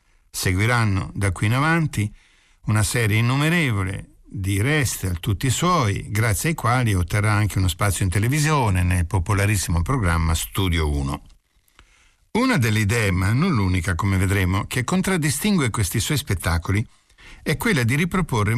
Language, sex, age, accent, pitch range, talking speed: Italian, male, 60-79, native, 95-130 Hz, 140 wpm